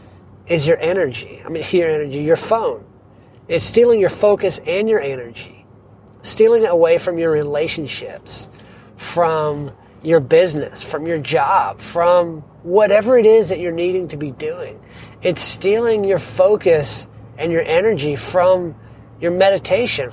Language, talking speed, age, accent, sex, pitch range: English, 145 wpm, 40-59, American, male, 145-195 Hz